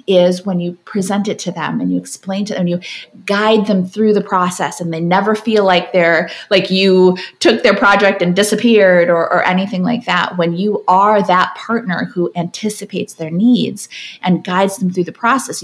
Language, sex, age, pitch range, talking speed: English, female, 30-49, 185-235 Hz, 200 wpm